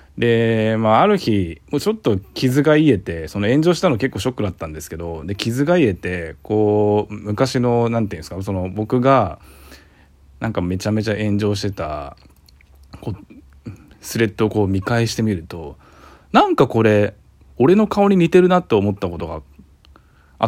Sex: male